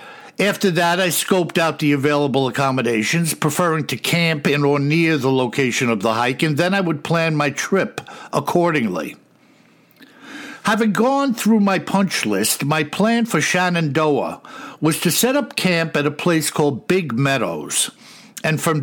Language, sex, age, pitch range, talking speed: English, male, 60-79, 150-200 Hz, 160 wpm